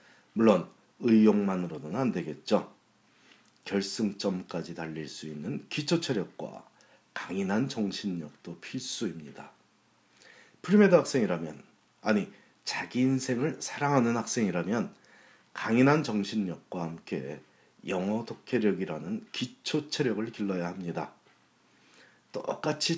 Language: Korean